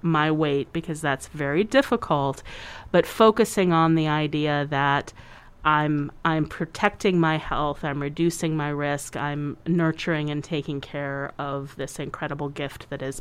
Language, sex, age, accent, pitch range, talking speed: English, female, 40-59, American, 145-185 Hz, 145 wpm